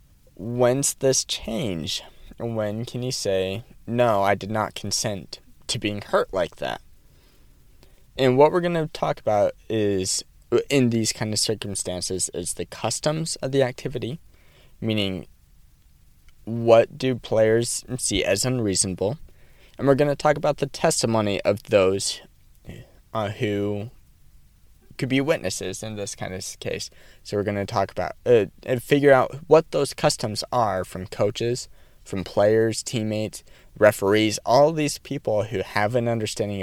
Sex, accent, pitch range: male, American, 95-130 Hz